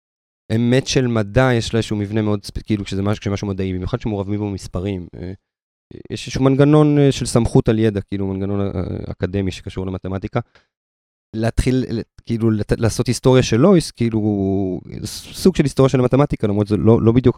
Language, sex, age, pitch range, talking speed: Hebrew, male, 30-49, 100-120 Hz, 150 wpm